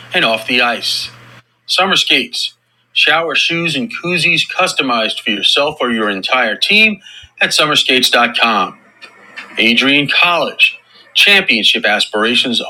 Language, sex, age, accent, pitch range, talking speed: English, male, 40-59, American, 115-155 Hz, 110 wpm